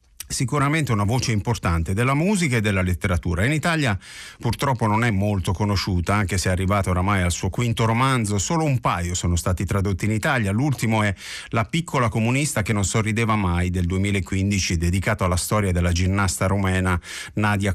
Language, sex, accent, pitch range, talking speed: Italian, male, native, 95-130 Hz, 170 wpm